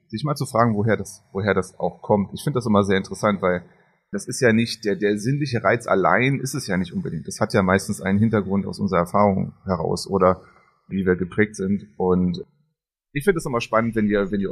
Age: 30-49